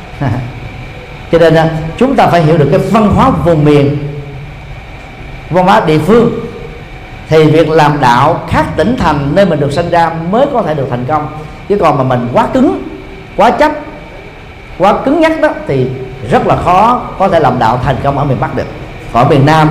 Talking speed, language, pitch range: 195 wpm, Vietnamese, 135-195 Hz